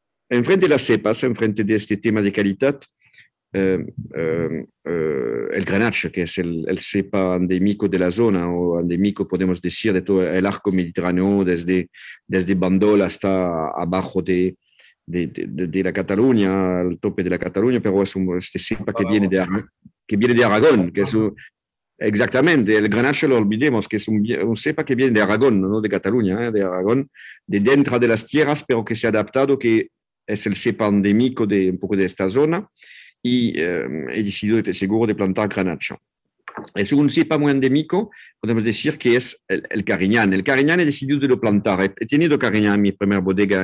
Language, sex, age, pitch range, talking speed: English, male, 50-69, 95-115 Hz, 190 wpm